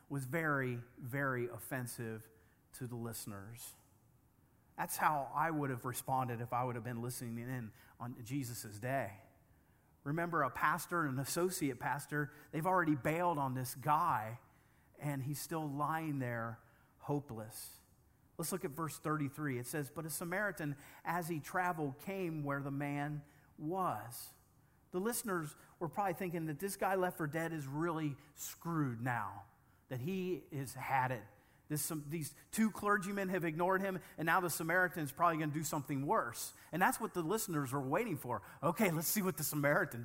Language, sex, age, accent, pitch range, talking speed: English, male, 40-59, American, 120-170 Hz, 165 wpm